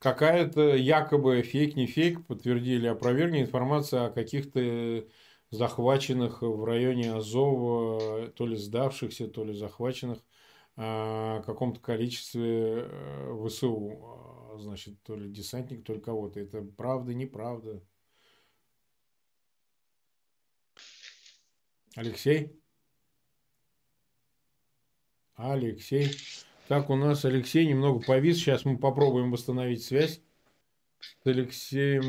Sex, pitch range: male, 115-140 Hz